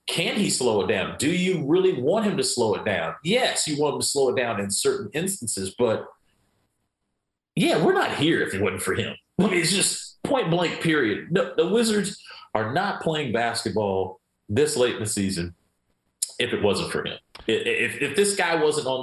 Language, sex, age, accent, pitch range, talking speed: English, male, 40-59, American, 95-160 Hz, 195 wpm